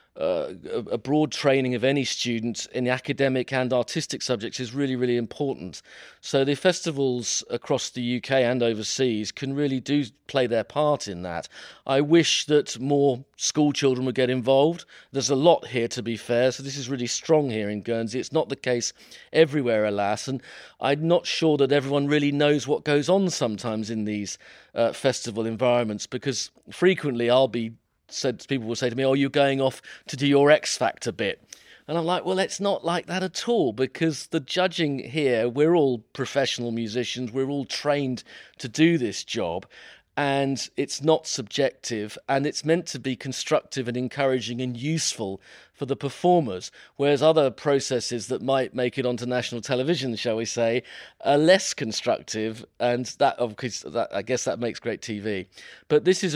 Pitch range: 120-145 Hz